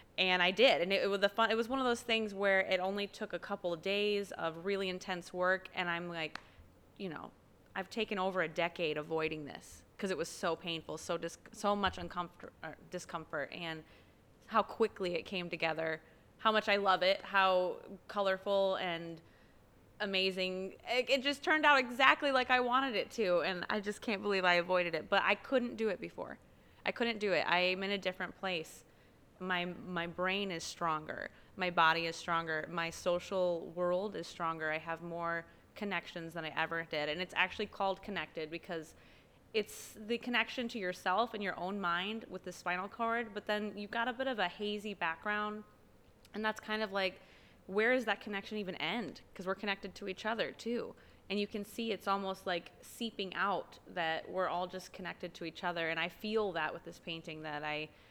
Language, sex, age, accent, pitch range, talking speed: English, female, 20-39, American, 170-210 Hz, 200 wpm